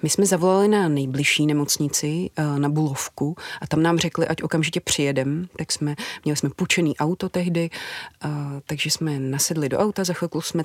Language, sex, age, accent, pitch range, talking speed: Czech, female, 30-49, native, 145-165 Hz, 170 wpm